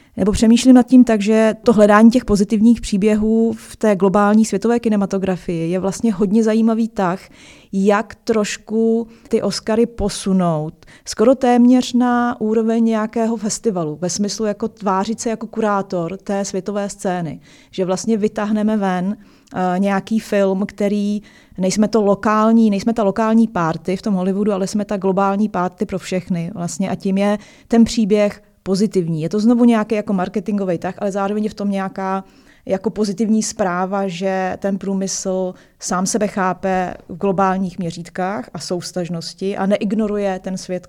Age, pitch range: 30-49, 185-220 Hz